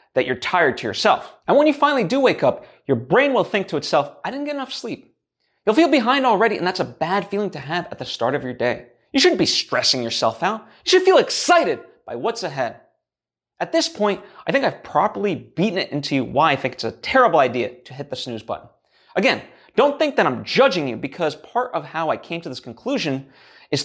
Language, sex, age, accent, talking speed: English, male, 30-49, American, 235 wpm